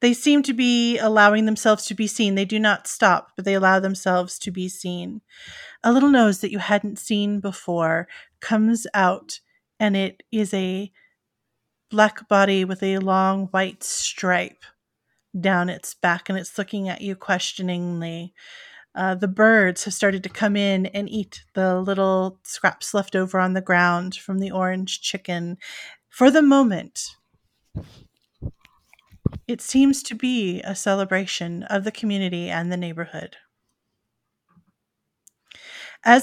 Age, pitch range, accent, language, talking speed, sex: 30-49, 185-225 Hz, American, English, 145 wpm, female